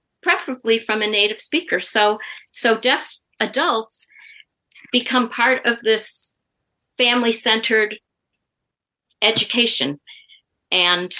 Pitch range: 185-245 Hz